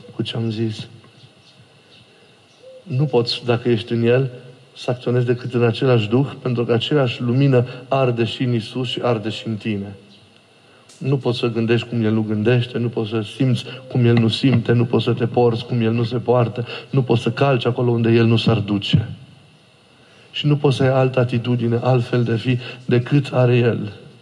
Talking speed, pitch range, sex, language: 195 wpm, 115-140 Hz, male, Romanian